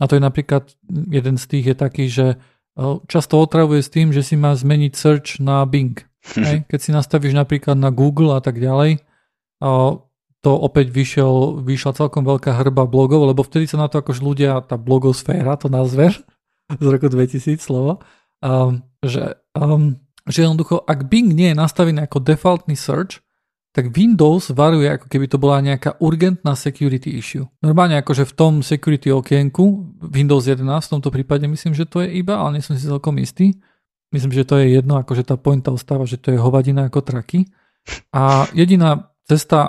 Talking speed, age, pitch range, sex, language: 175 wpm, 40-59, 135-155 Hz, male, Slovak